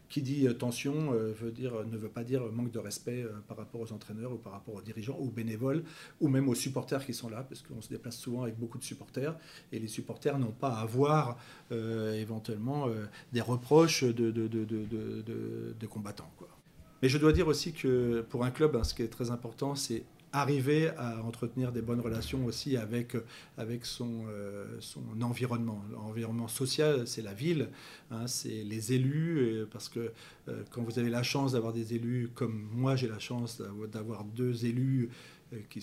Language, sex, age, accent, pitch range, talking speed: French, male, 40-59, French, 115-135 Hz, 200 wpm